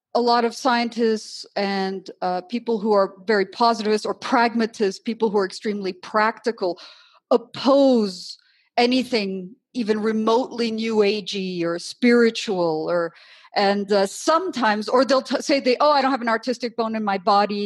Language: English